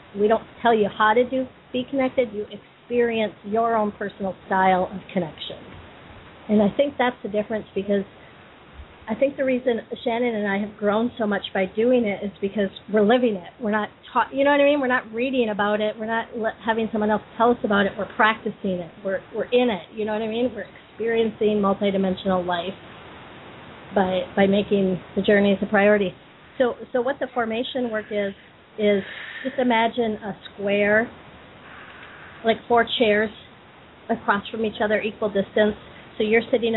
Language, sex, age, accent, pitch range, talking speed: English, female, 40-59, American, 200-230 Hz, 185 wpm